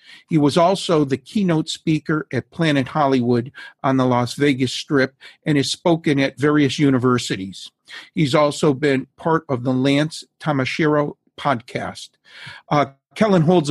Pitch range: 130-155 Hz